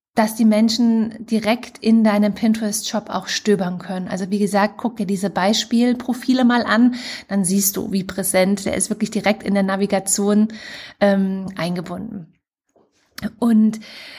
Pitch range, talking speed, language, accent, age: 200-230 Hz, 145 wpm, German, German, 20-39